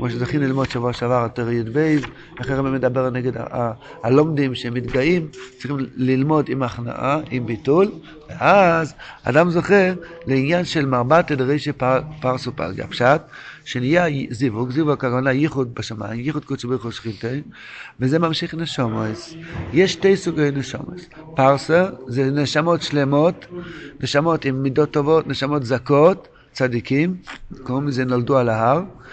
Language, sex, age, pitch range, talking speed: Hebrew, male, 60-79, 125-160 Hz, 125 wpm